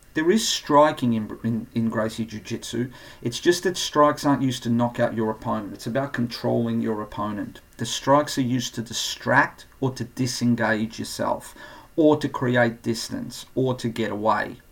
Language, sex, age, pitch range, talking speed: English, male, 40-59, 115-130 Hz, 170 wpm